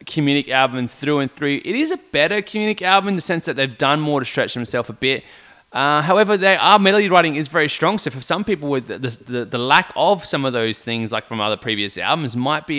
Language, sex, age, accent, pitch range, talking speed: English, male, 20-39, Australian, 115-155 Hz, 245 wpm